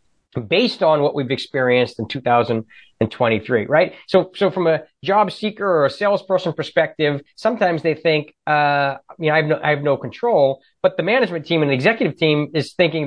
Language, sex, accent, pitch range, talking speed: English, male, American, 125-160 Hz, 200 wpm